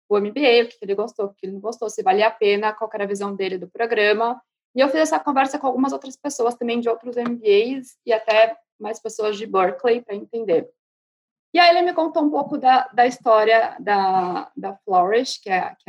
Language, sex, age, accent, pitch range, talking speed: Portuguese, female, 20-39, Brazilian, 195-245 Hz, 225 wpm